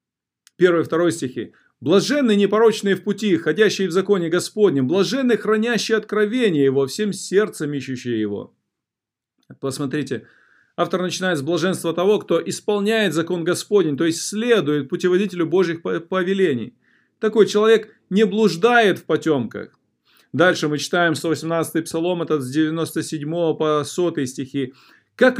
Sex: male